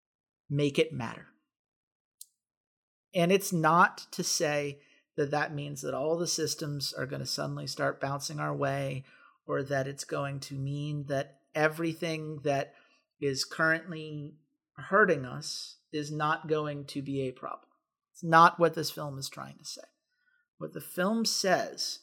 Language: English